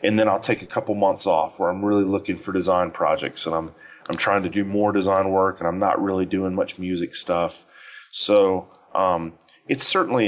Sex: male